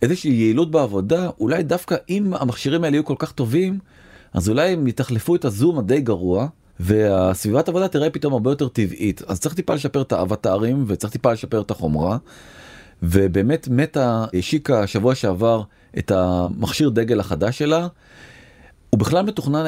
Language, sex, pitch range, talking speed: Hebrew, male, 100-140 Hz, 160 wpm